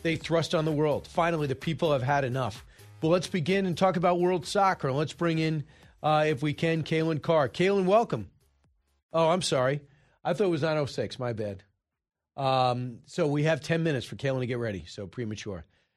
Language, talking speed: English, 200 wpm